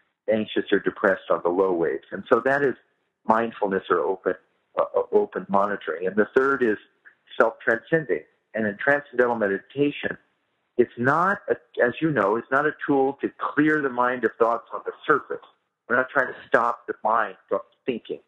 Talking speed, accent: 175 wpm, American